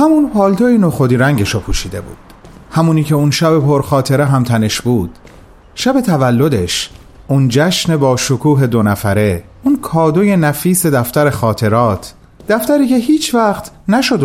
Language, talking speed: Persian, 135 wpm